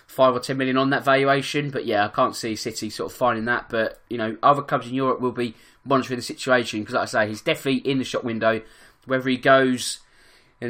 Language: English